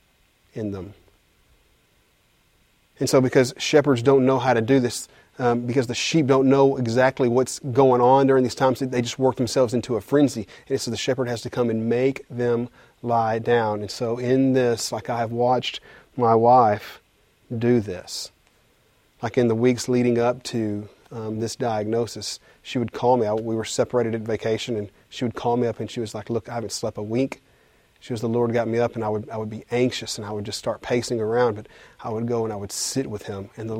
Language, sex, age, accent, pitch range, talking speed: English, male, 30-49, American, 110-125 Hz, 220 wpm